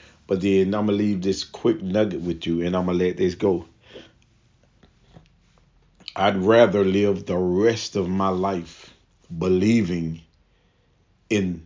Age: 40-59